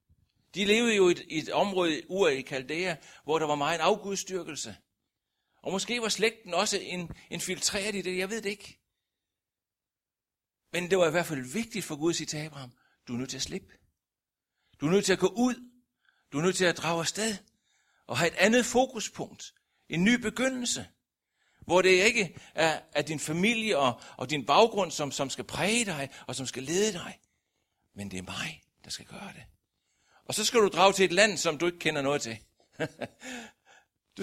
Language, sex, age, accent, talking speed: Danish, male, 60-79, native, 200 wpm